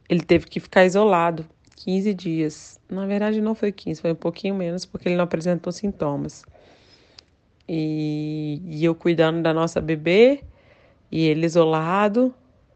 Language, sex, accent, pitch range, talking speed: Portuguese, female, Brazilian, 160-190 Hz, 145 wpm